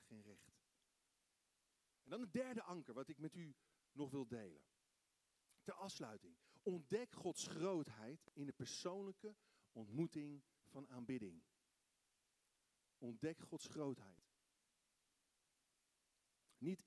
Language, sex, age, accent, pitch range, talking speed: Dutch, male, 50-69, Dutch, 130-195 Hz, 105 wpm